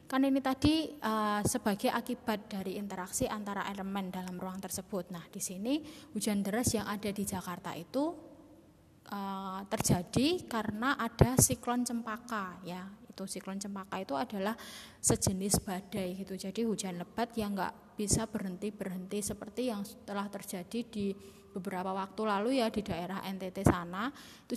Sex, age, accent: female, 20-39, native